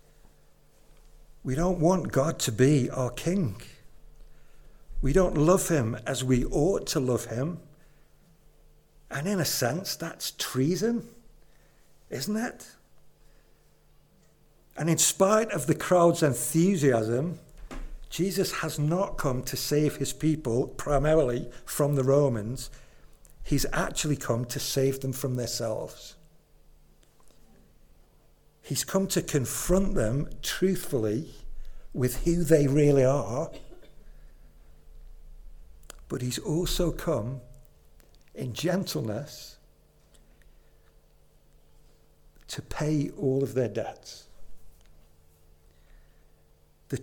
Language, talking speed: English, 100 wpm